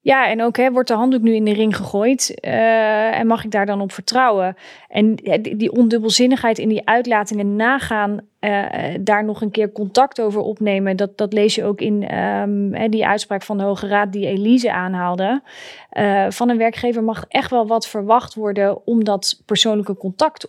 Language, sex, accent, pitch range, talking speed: Dutch, female, Dutch, 195-225 Hz, 185 wpm